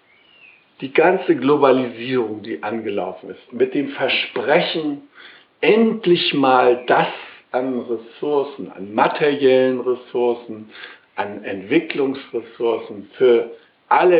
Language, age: German, 60-79